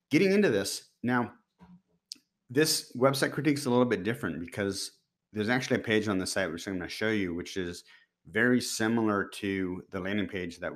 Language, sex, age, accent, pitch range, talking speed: English, male, 30-49, American, 90-110 Hz, 195 wpm